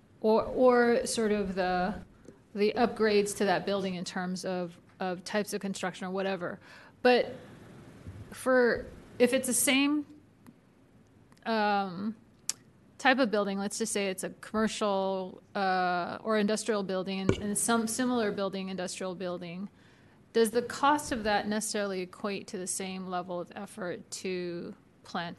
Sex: female